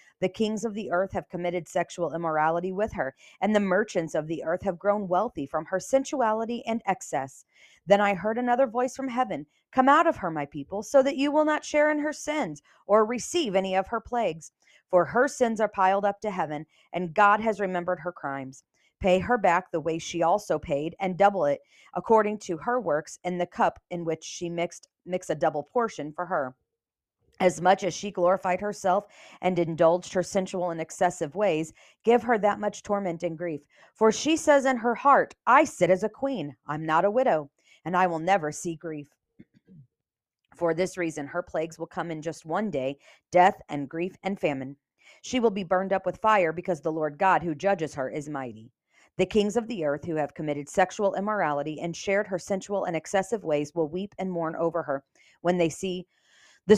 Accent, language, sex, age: American, English, female, 40-59